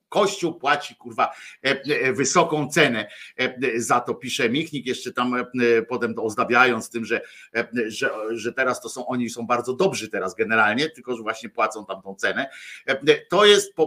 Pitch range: 120-170 Hz